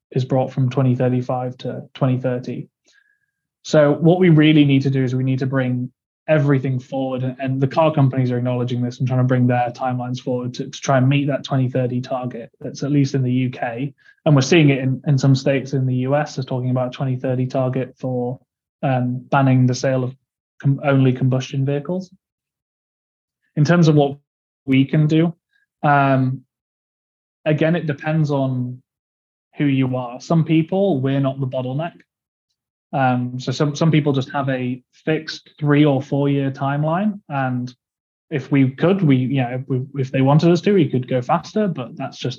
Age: 20-39